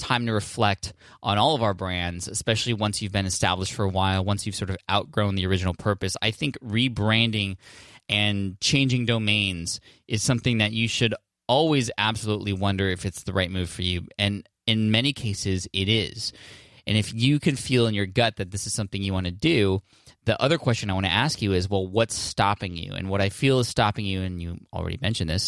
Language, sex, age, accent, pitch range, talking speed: English, male, 20-39, American, 95-120 Hz, 215 wpm